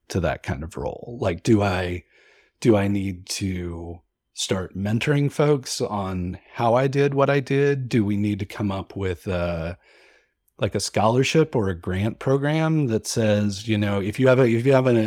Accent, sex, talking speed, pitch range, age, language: American, male, 190 wpm, 95-120 Hz, 30-49, English